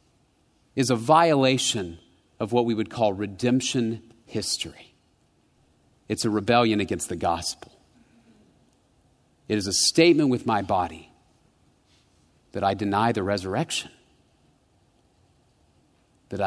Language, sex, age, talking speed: English, male, 40-59, 105 wpm